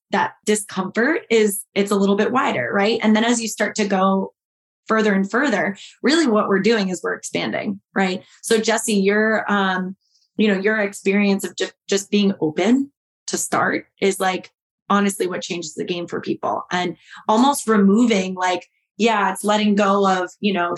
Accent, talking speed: American, 175 wpm